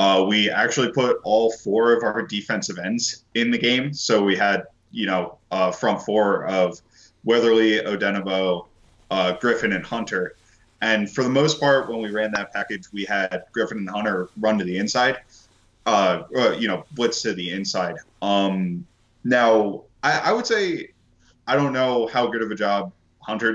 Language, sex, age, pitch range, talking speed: English, male, 20-39, 100-120 Hz, 175 wpm